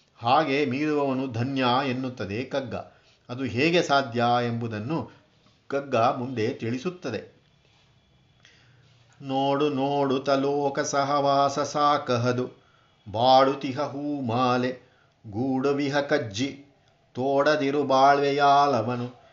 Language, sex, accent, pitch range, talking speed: Kannada, male, native, 125-145 Hz, 75 wpm